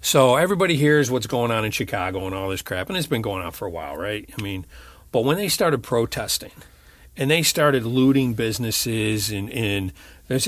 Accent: American